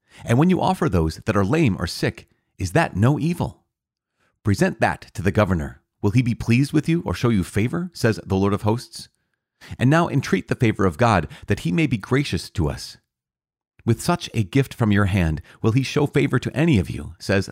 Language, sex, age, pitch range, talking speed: English, male, 30-49, 90-130 Hz, 220 wpm